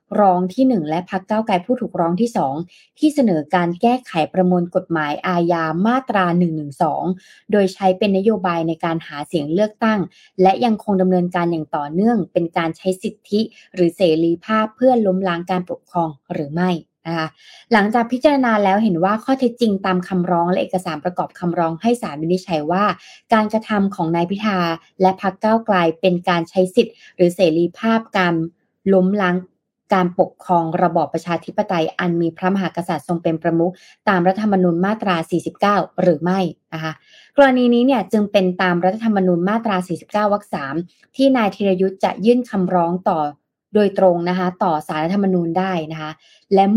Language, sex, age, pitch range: Thai, female, 20-39, 170-210 Hz